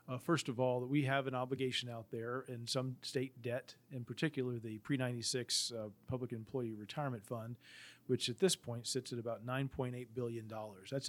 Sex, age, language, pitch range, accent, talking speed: male, 40-59, English, 115-135 Hz, American, 185 wpm